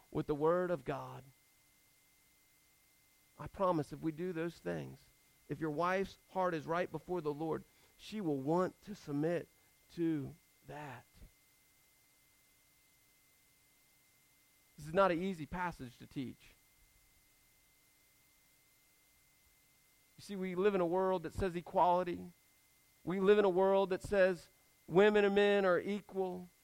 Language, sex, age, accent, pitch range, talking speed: English, male, 40-59, American, 145-205 Hz, 130 wpm